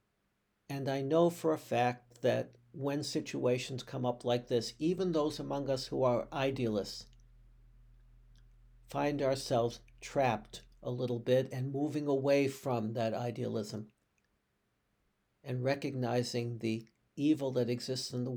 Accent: American